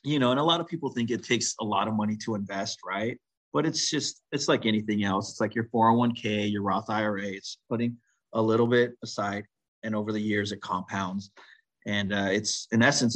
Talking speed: 220 wpm